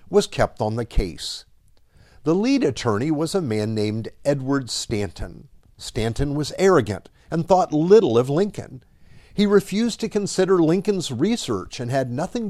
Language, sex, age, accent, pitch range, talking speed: English, male, 50-69, American, 110-180 Hz, 150 wpm